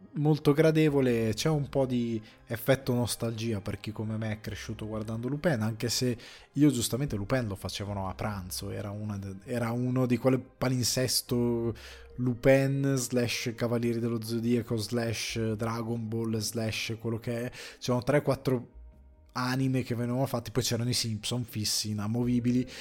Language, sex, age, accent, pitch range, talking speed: Italian, male, 20-39, native, 105-125 Hz, 145 wpm